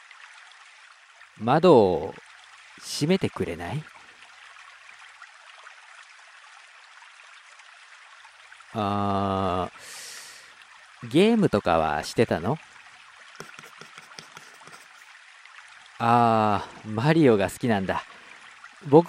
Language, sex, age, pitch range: Japanese, male, 50-69, 105-165 Hz